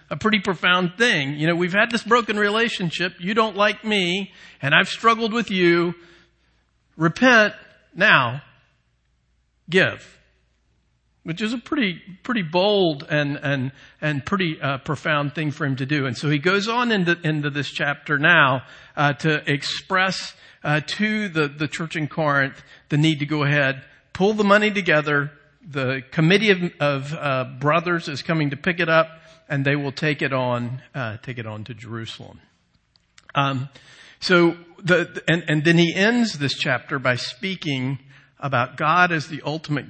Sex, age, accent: male, 50-69, American